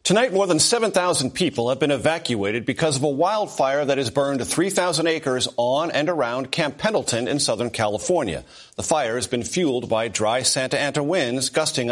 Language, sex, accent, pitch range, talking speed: English, male, American, 125-175 Hz, 180 wpm